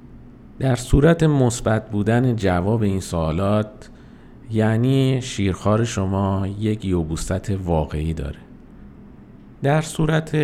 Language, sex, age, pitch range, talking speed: Persian, male, 50-69, 100-135 Hz, 90 wpm